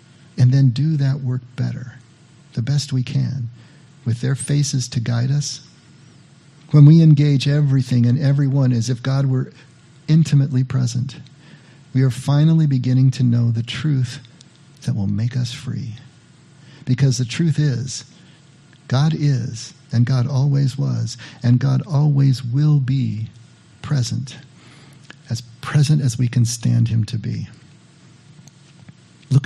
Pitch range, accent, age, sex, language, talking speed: 125-145 Hz, American, 50-69, male, English, 135 wpm